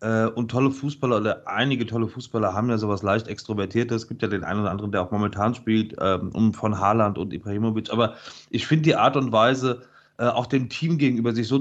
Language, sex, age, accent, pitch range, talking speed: German, male, 30-49, German, 110-140 Hz, 210 wpm